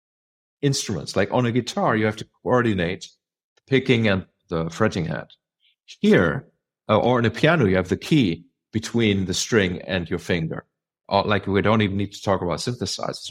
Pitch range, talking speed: 95-125 Hz, 185 wpm